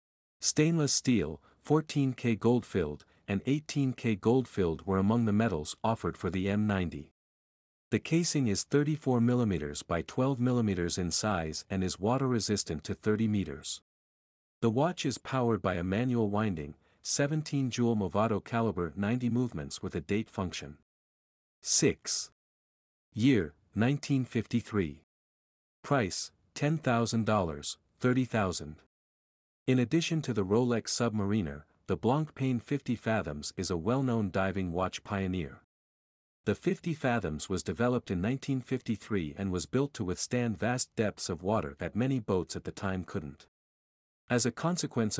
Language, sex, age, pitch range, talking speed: English, male, 50-69, 90-125 Hz, 125 wpm